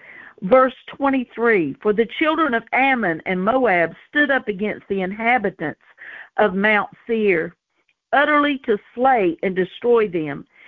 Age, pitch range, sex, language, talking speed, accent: 50-69, 205-275 Hz, female, English, 135 wpm, American